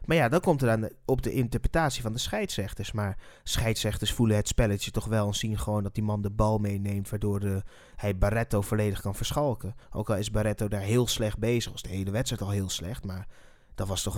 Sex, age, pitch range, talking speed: male, 30-49, 105-135 Hz, 235 wpm